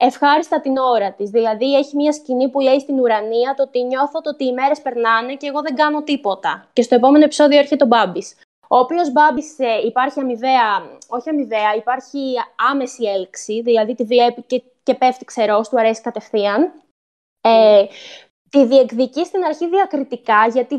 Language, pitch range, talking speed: Greek, 220-280 Hz, 170 wpm